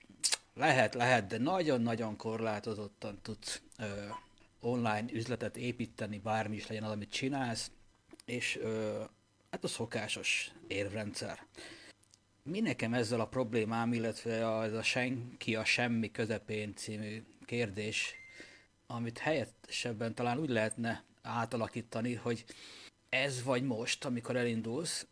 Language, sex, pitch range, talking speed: Hungarian, male, 110-130 Hz, 110 wpm